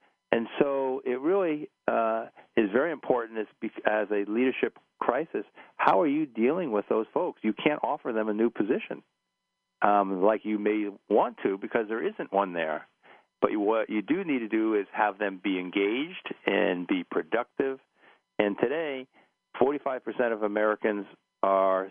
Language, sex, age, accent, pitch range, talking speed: English, male, 50-69, American, 100-120 Hz, 160 wpm